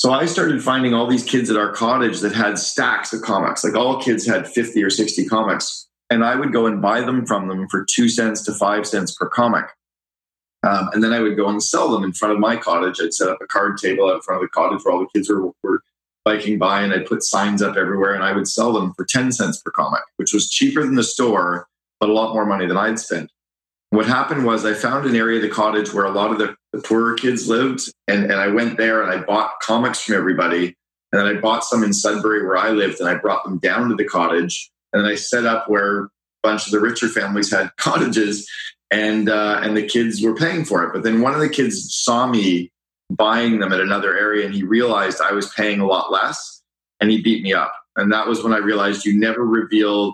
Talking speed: 245 wpm